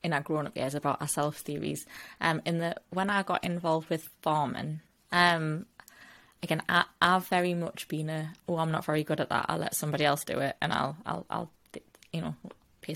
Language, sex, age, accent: English, female, 20-39, British